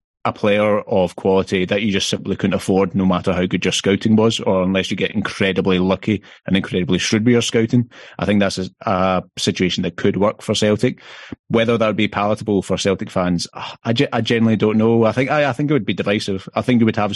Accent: British